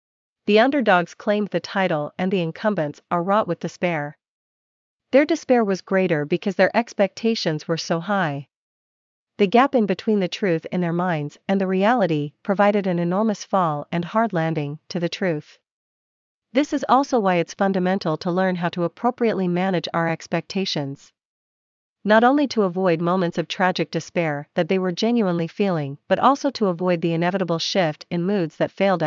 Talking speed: 170 wpm